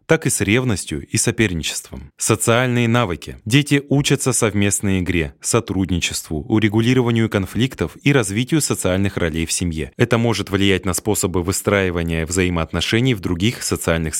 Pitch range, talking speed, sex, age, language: 90-120 Hz, 130 wpm, male, 20-39, Russian